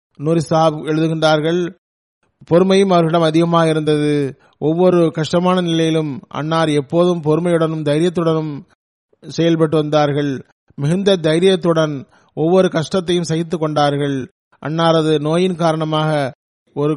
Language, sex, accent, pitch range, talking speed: Tamil, male, native, 145-165 Hz, 90 wpm